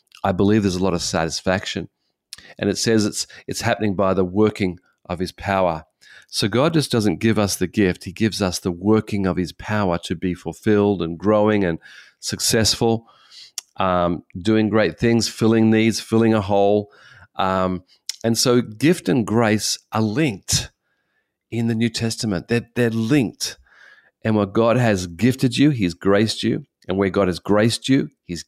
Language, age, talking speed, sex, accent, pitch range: English, 40-59, 175 wpm, male, Australian, 90-115 Hz